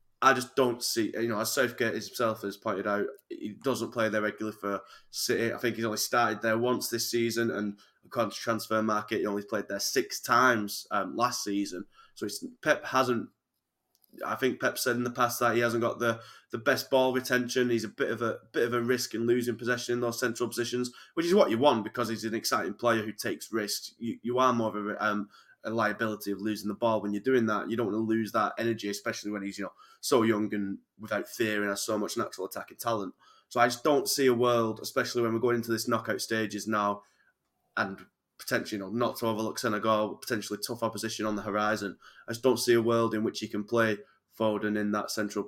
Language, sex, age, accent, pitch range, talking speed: English, male, 20-39, British, 105-120 Hz, 235 wpm